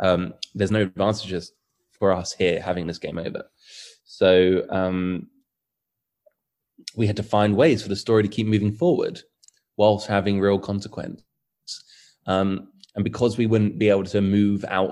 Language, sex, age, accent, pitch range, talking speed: English, male, 20-39, British, 95-110 Hz, 155 wpm